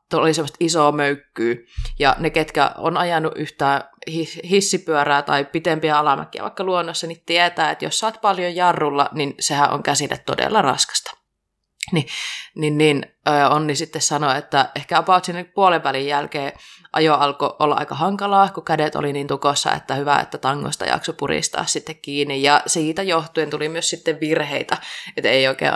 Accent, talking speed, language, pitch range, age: native, 165 wpm, Finnish, 145-185 Hz, 20-39